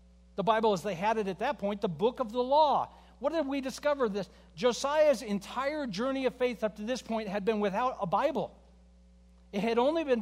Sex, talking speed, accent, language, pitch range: male, 215 wpm, American, English, 160-235 Hz